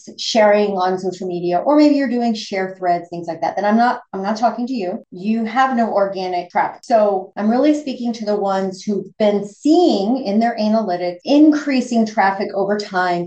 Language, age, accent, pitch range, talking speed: English, 30-49, American, 185-245 Hz, 195 wpm